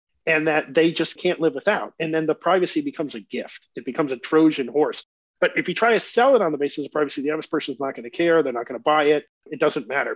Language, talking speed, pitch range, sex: English, 270 wpm, 145-180 Hz, male